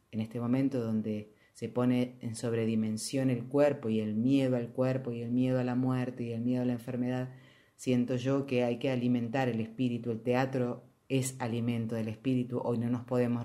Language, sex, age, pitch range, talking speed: Spanish, female, 30-49, 110-130 Hz, 200 wpm